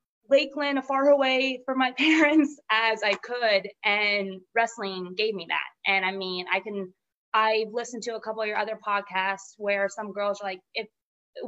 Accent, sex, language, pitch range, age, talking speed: American, female, English, 190-225 Hz, 20-39, 190 wpm